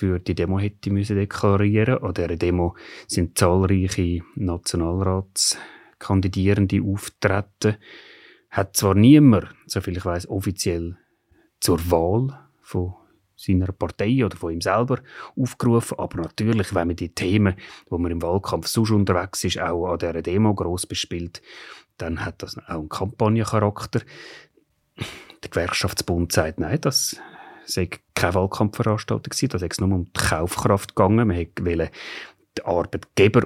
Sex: male